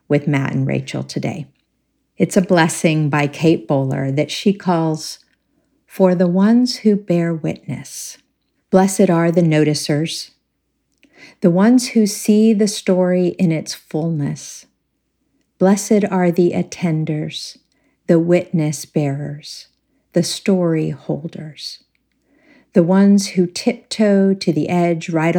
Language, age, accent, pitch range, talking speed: English, 50-69, American, 155-185 Hz, 120 wpm